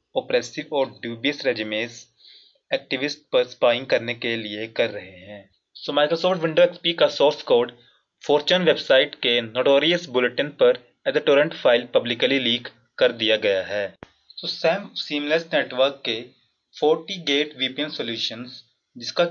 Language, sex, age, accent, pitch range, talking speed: Hindi, male, 30-49, native, 115-170 Hz, 70 wpm